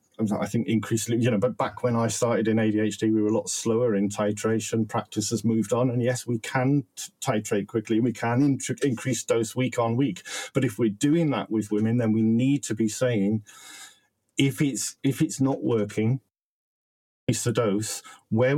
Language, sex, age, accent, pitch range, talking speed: English, male, 40-59, British, 110-130 Hz, 195 wpm